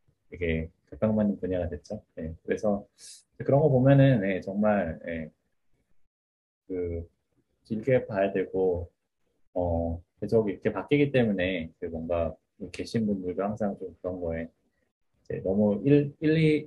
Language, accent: Korean, native